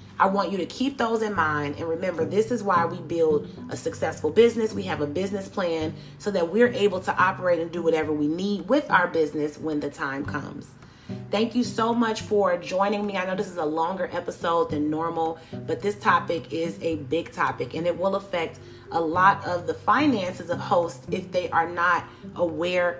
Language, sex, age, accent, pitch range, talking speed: English, female, 30-49, American, 160-215 Hz, 210 wpm